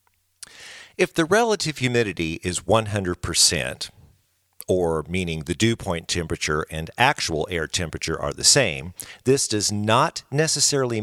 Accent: American